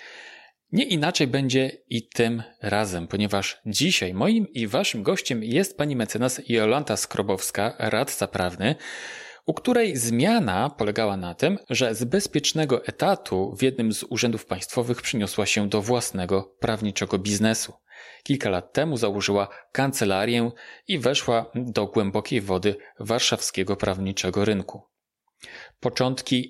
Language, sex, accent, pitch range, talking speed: Polish, male, native, 100-140 Hz, 120 wpm